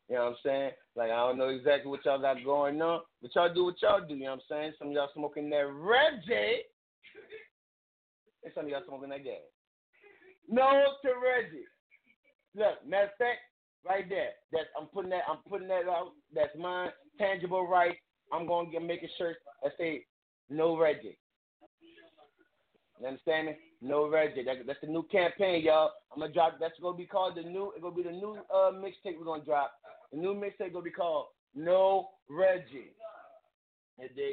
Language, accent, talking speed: English, American, 190 wpm